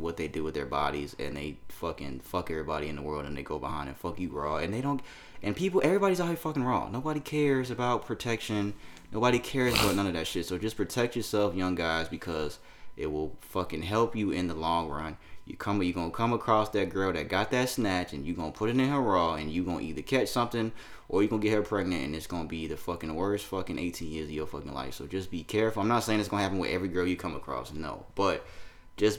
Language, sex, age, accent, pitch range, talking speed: English, male, 20-39, American, 85-125 Hz, 255 wpm